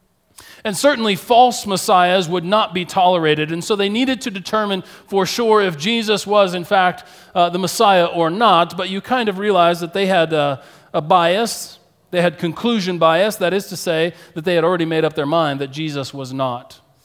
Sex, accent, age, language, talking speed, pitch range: male, American, 40-59, English, 200 wpm, 165-215 Hz